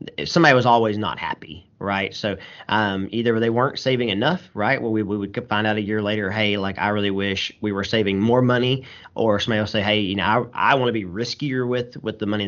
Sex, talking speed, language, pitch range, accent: male, 240 wpm, English, 95-115 Hz, American